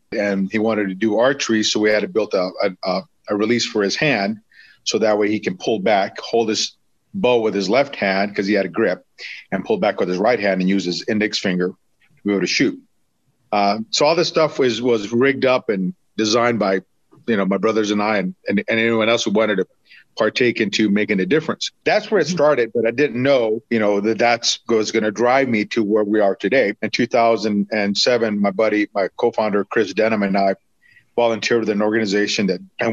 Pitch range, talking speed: 100-115 Hz, 220 wpm